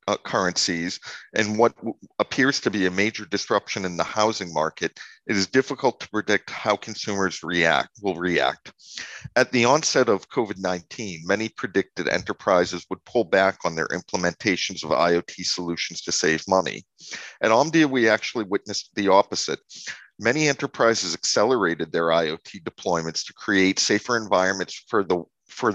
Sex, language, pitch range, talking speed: male, English, 85-110 Hz, 150 wpm